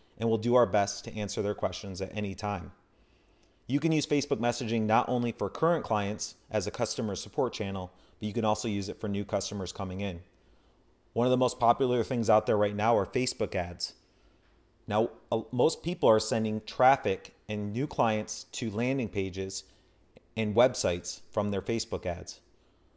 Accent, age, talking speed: American, 30-49, 185 wpm